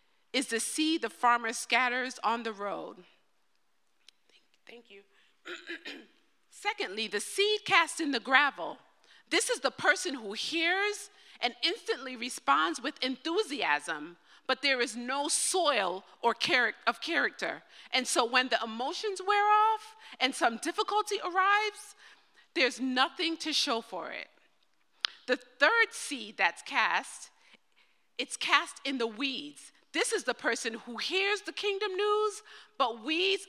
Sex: female